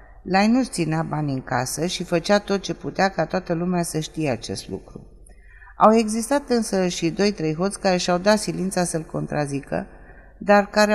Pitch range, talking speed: 155-195 Hz, 180 wpm